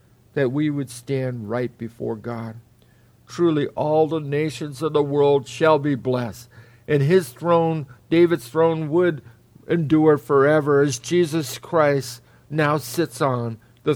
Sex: male